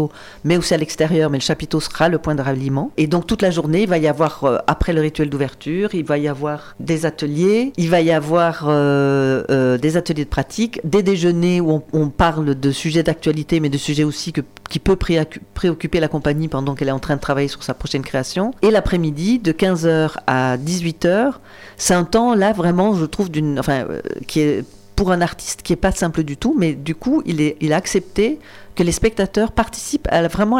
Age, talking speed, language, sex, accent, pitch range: 40-59, 225 wpm, French, female, French, 145-180 Hz